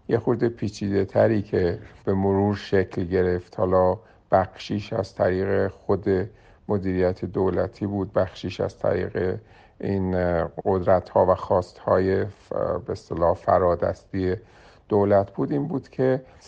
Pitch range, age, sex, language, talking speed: 95-115 Hz, 50-69, male, Persian, 125 wpm